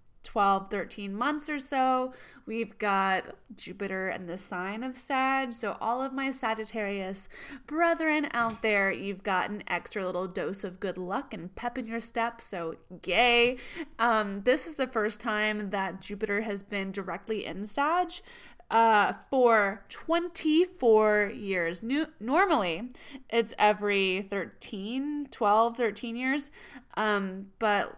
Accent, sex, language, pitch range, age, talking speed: American, female, English, 205-265 Hz, 20-39, 135 wpm